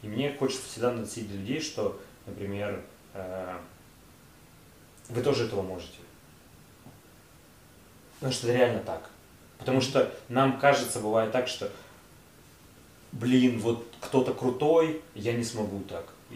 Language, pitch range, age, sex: Russian, 105-125 Hz, 30-49, male